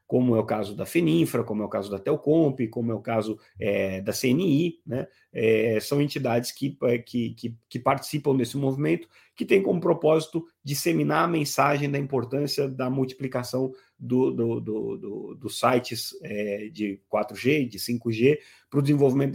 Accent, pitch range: Brazilian, 115-145 Hz